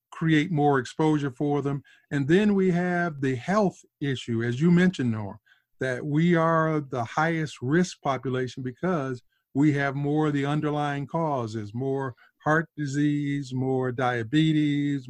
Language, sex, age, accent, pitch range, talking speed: English, male, 50-69, American, 130-155 Hz, 145 wpm